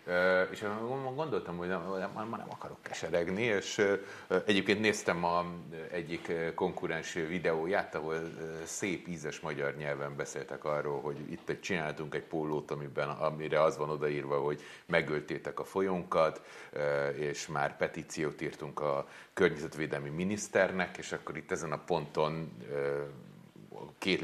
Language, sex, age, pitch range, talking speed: Hungarian, male, 30-49, 75-90 Hz, 125 wpm